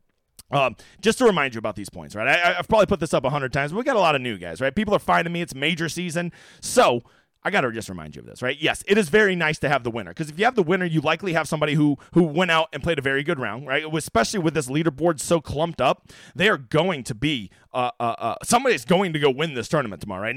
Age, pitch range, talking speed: 30-49, 135-185 Hz, 290 wpm